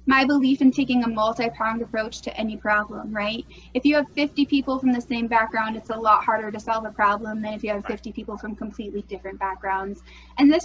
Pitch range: 215-260 Hz